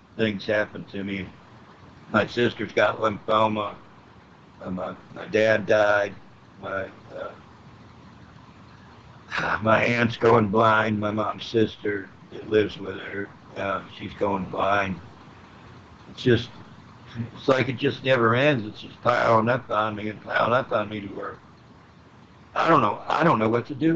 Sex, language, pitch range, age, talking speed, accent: male, English, 105-120 Hz, 60-79, 145 wpm, American